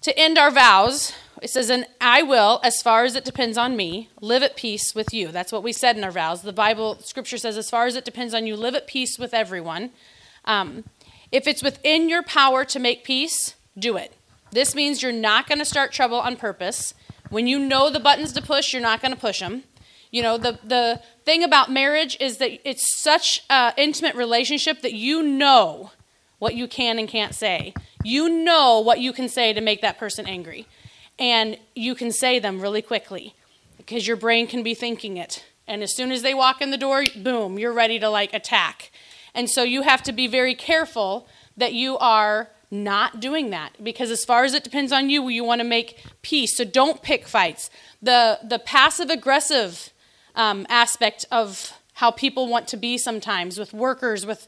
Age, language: 30-49, English